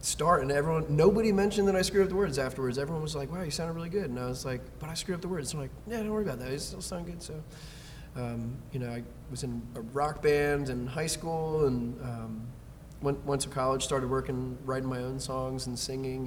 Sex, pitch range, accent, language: male, 120-145 Hz, American, English